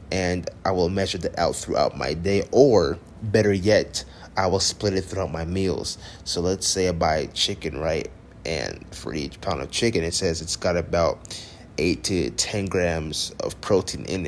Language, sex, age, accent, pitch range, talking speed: English, male, 30-49, American, 85-95 Hz, 185 wpm